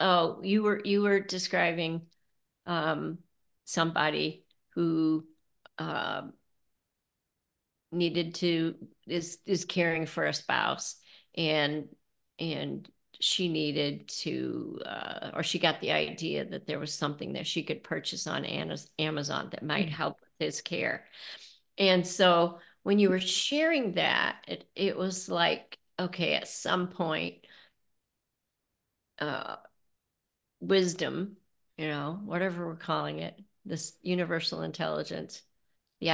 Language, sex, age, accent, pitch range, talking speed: English, female, 50-69, American, 160-190 Hz, 120 wpm